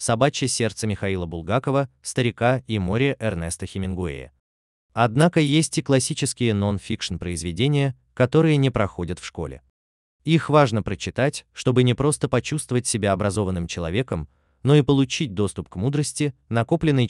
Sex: male